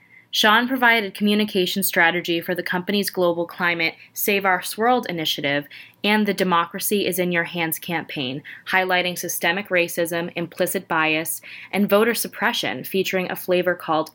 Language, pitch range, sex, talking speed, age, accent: English, 165-195 Hz, female, 140 wpm, 20-39, American